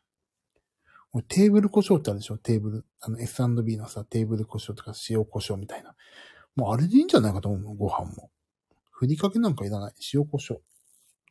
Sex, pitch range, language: male, 100-120 Hz, Japanese